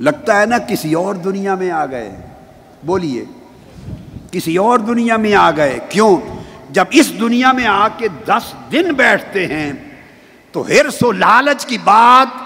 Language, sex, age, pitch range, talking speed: Urdu, male, 50-69, 215-295 Hz, 160 wpm